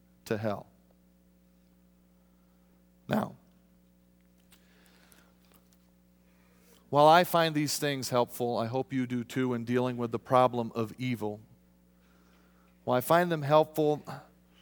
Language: English